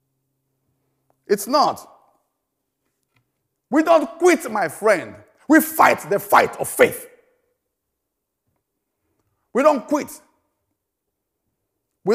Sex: male